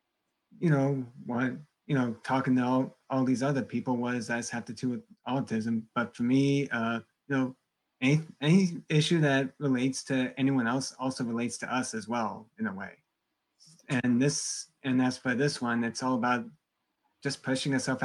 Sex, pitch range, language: male, 120-140 Hz, English